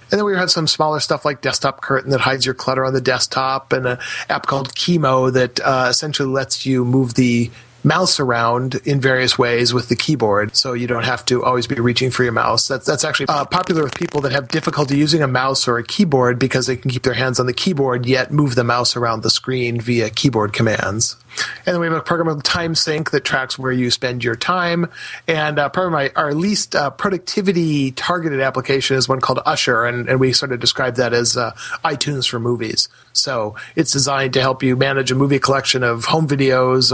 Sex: male